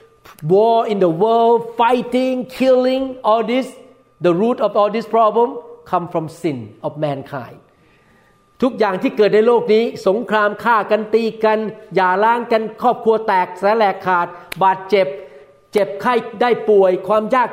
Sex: male